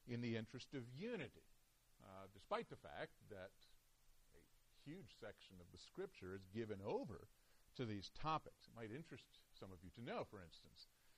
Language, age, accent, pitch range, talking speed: English, 50-69, American, 100-155 Hz, 170 wpm